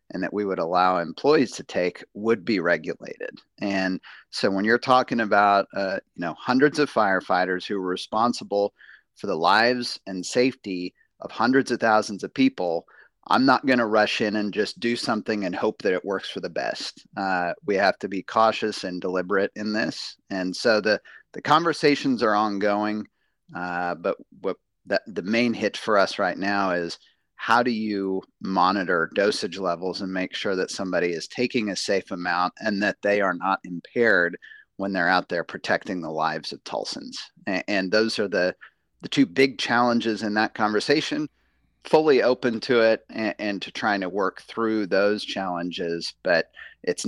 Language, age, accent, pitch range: English, 30-49, American, 95-120 Hz